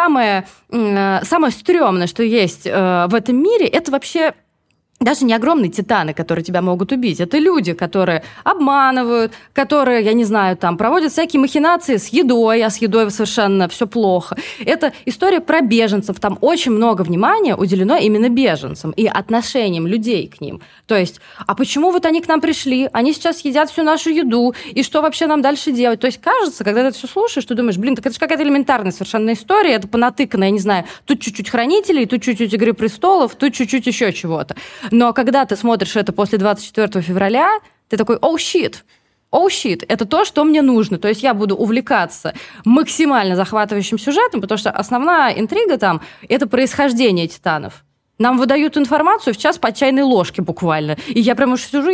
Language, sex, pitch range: Russian, female, 210-280 Hz